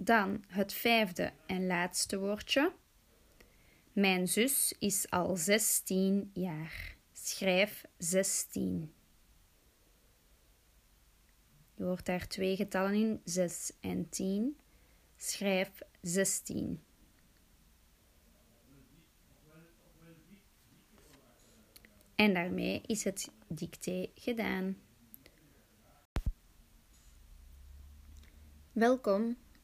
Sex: female